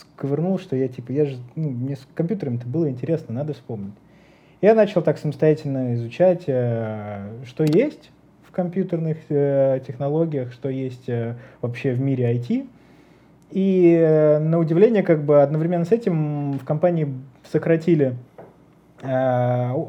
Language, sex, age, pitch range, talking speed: Russian, male, 20-39, 130-165 Hz, 140 wpm